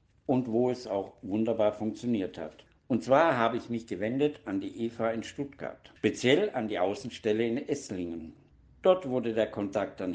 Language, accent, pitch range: German, German, 105-135 Hz